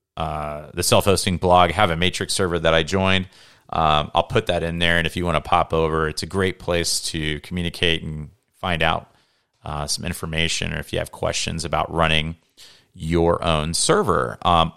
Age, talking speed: 30-49, 190 wpm